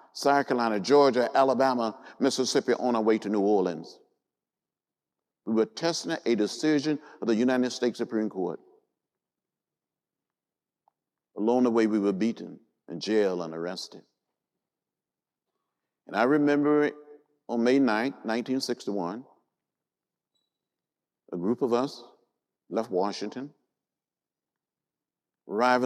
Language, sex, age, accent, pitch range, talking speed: English, male, 50-69, American, 105-150 Hz, 105 wpm